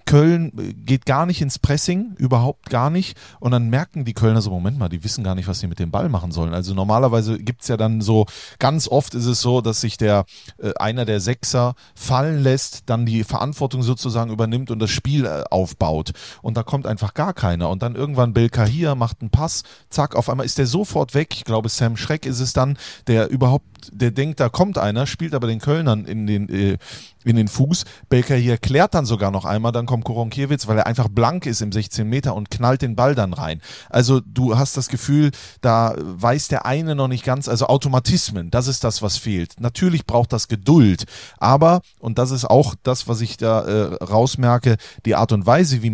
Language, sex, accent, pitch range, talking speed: German, male, German, 110-135 Hz, 215 wpm